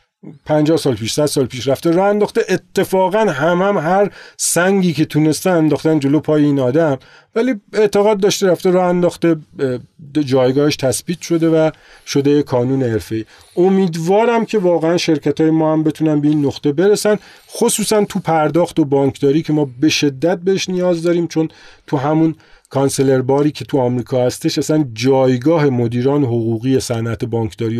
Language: Persian